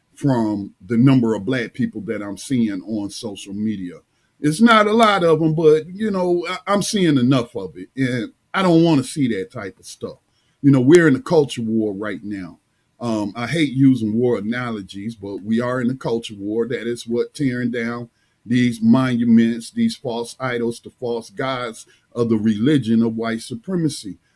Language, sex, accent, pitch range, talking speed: English, male, American, 115-150 Hz, 185 wpm